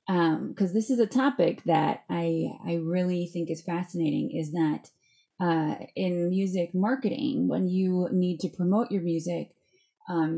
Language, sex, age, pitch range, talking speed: English, female, 20-39, 165-195 Hz, 155 wpm